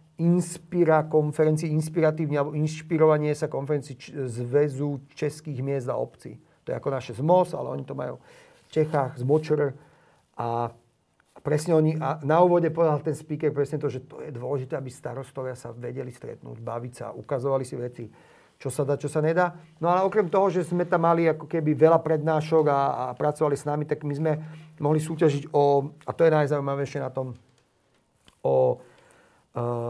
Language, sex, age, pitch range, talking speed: Slovak, male, 40-59, 145-165 Hz, 175 wpm